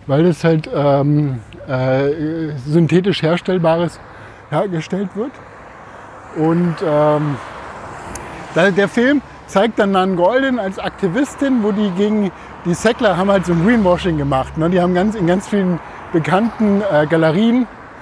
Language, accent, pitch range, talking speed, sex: German, German, 140-175 Hz, 140 wpm, male